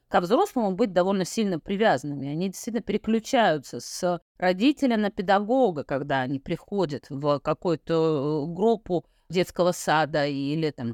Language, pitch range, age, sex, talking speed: Russian, 180-245 Hz, 30-49, female, 125 wpm